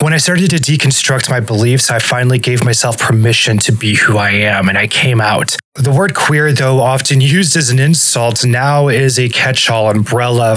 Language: English